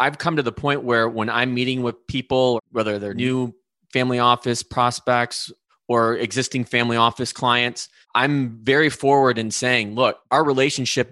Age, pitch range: 30-49, 115-135 Hz